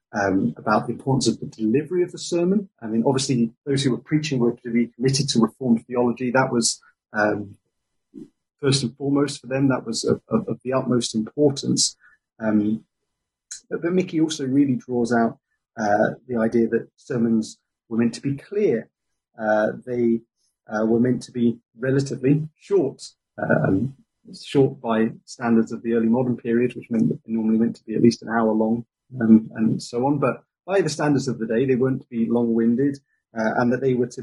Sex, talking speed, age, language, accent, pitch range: male, 195 wpm, 30-49, English, British, 115-140 Hz